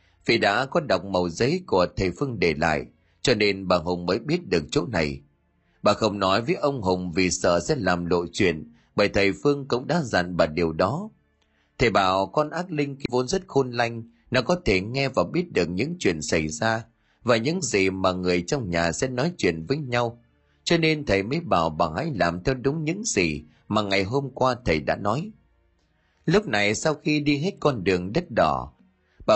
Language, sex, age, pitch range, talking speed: Vietnamese, male, 30-49, 90-140 Hz, 210 wpm